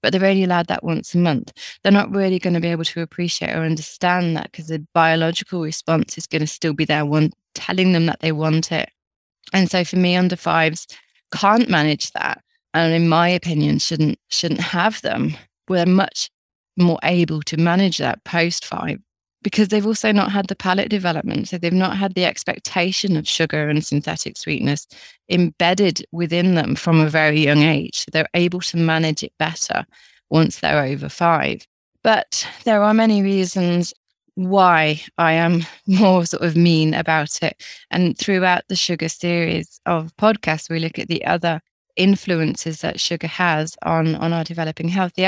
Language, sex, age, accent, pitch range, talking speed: English, female, 20-39, British, 160-190 Hz, 180 wpm